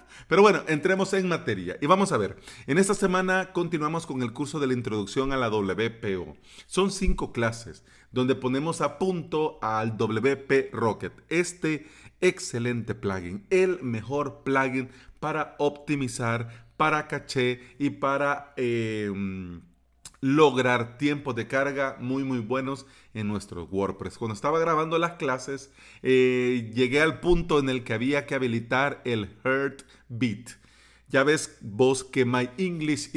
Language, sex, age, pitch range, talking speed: Spanish, male, 40-59, 115-150 Hz, 140 wpm